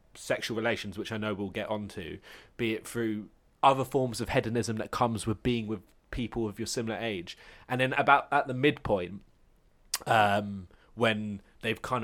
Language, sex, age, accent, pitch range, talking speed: English, male, 20-39, British, 105-125 Hz, 175 wpm